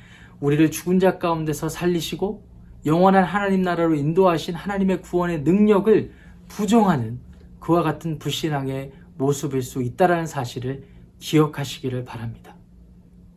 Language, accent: Korean, native